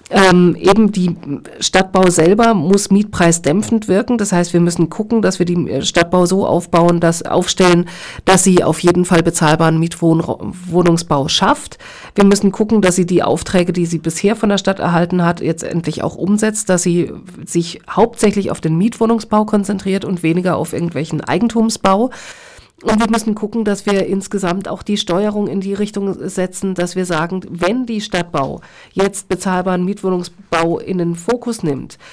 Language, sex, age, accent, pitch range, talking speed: German, female, 50-69, German, 170-205 Hz, 160 wpm